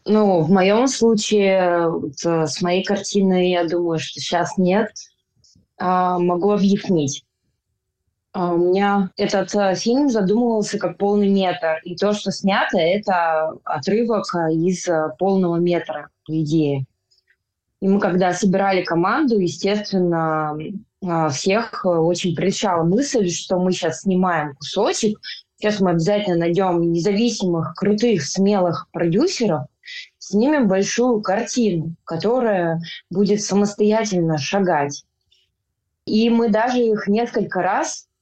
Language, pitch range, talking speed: Russian, 165-205 Hz, 110 wpm